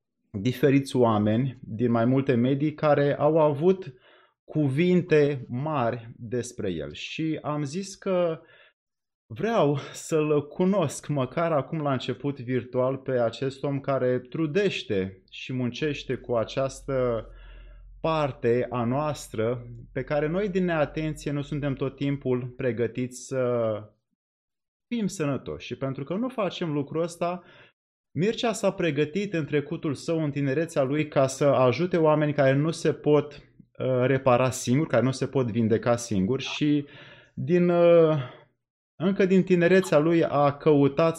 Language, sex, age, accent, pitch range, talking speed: Romanian, male, 30-49, native, 125-160 Hz, 135 wpm